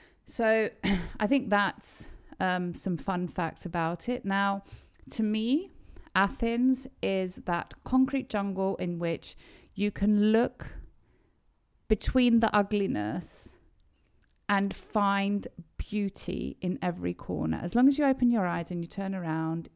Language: Greek